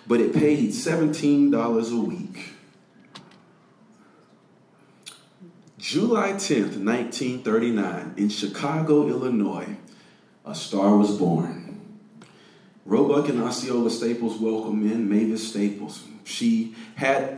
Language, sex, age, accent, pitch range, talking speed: English, male, 40-59, American, 105-150 Hz, 85 wpm